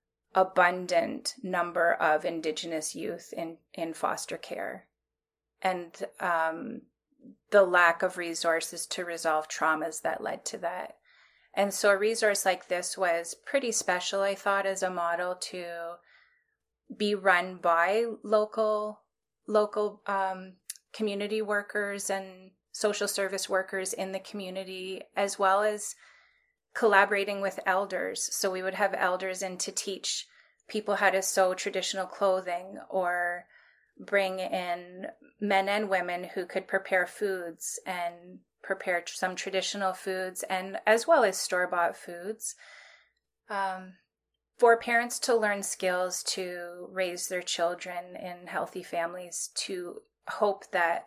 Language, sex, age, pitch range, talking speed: English, female, 30-49, 175-205 Hz, 130 wpm